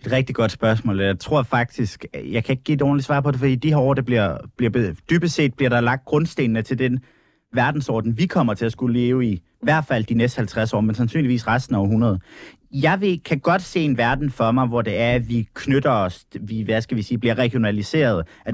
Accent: native